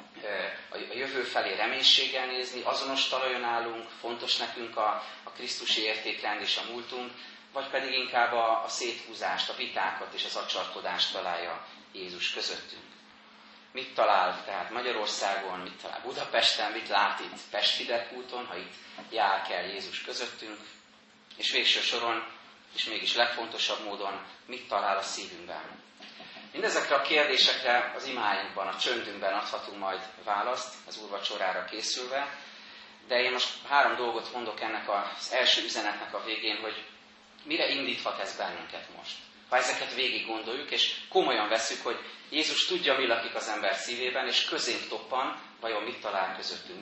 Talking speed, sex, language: 145 wpm, male, Hungarian